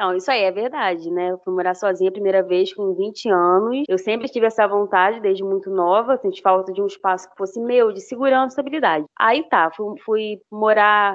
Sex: female